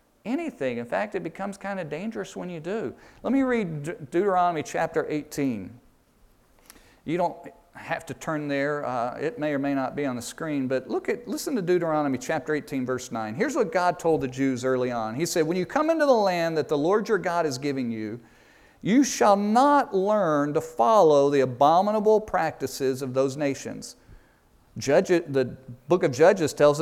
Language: English